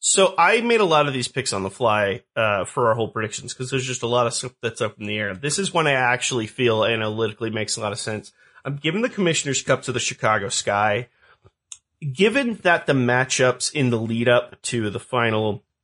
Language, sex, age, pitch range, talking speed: English, male, 30-49, 110-130 Hz, 225 wpm